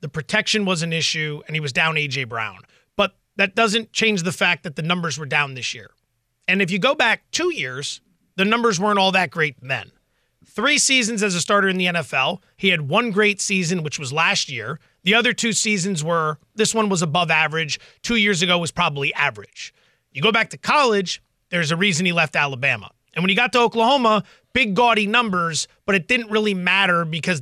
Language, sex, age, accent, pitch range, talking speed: English, male, 30-49, American, 155-210 Hz, 210 wpm